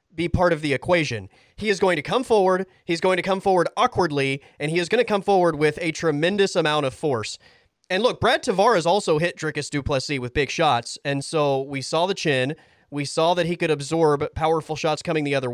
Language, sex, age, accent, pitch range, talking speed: English, male, 30-49, American, 135-185 Hz, 225 wpm